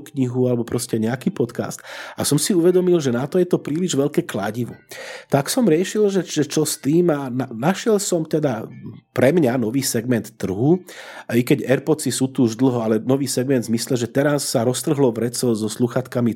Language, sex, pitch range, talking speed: Slovak, male, 115-145 Hz, 190 wpm